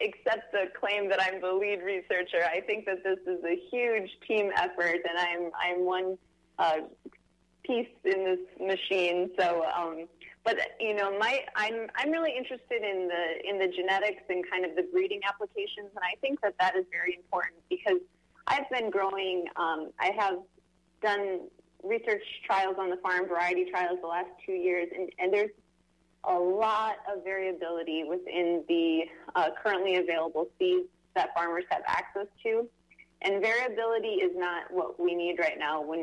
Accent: American